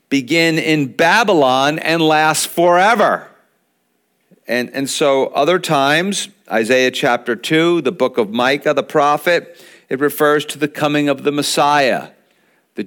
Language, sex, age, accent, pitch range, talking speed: English, male, 50-69, American, 125-155 Hz, 135 wpm